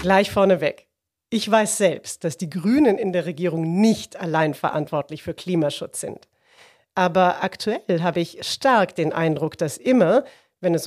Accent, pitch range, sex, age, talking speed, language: German, 165-225 Hz, female, 40-59, 155 wpm, German